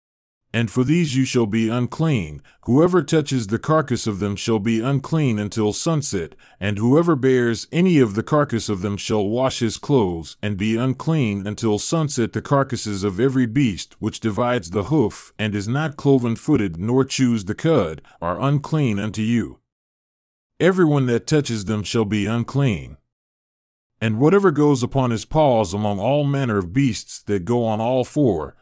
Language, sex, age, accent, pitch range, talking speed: English, male, 40-59, American, 105-140 Hz, 170 wpm